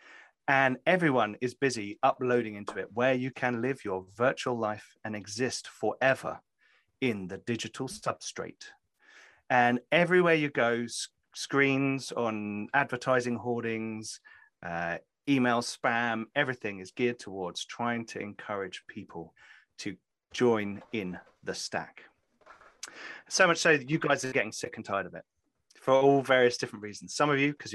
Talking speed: 145 wpm